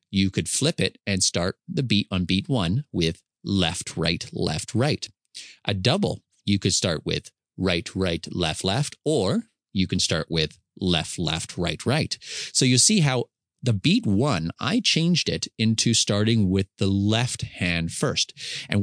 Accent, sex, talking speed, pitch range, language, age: American, male, 170 wpm, 95-120 Hz, English, 30-49